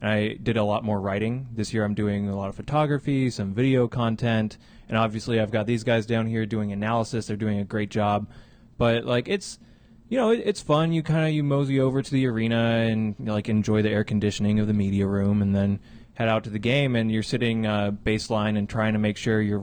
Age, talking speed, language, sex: 20-39, 240 wpm, English, male